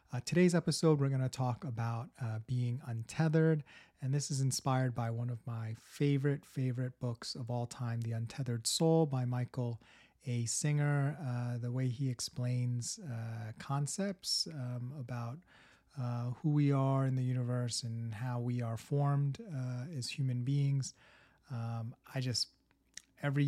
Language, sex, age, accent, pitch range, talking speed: English, male, 30-49, American, 115-135 Hz, 155 wpm